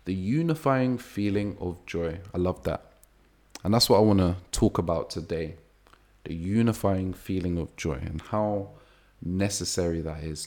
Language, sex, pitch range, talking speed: English, male, 85-100 Hz, 155 wpm